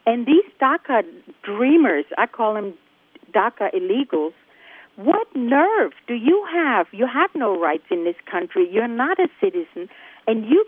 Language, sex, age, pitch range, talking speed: English, female, 50-69, 215-335 Hz, 150 wpm